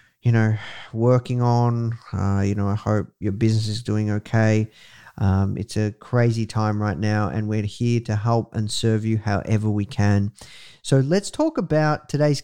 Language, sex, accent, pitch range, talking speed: English, male, Australian, 110-130 Hz, 180 wpm